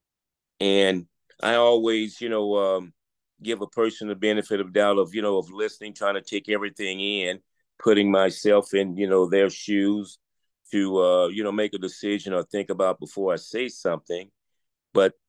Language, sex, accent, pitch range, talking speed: English, male, American, 100-120 Hz, 175 wpm